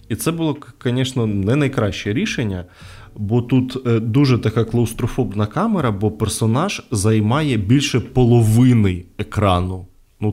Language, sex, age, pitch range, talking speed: Ukrainian, male, 20-39, 95-115 Hz, 115 wpm